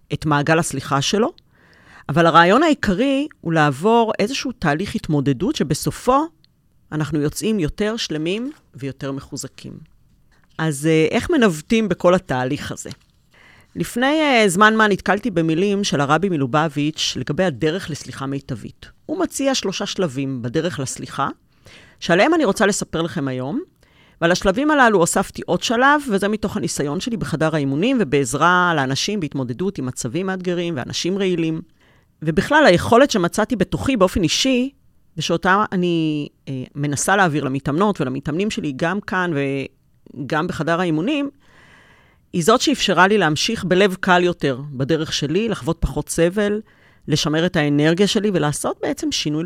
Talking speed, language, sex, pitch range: 130 wpm, Hebrew, female, 150-210 Hz